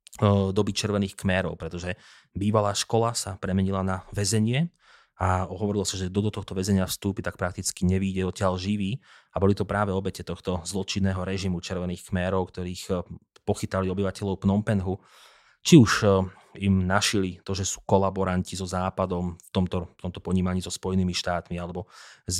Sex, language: male, Slovak